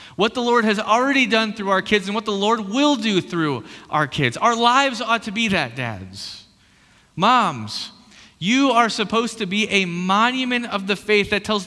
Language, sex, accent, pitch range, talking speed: English, male, American, 155-230 Hz, 195 wpm